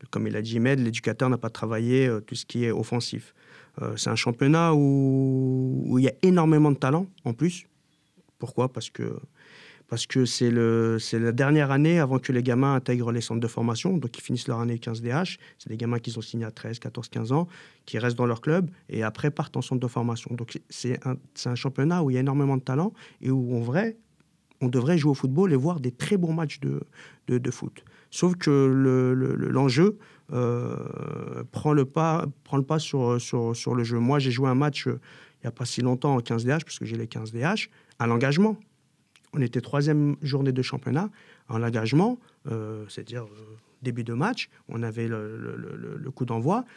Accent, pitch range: French, 120-150 Hz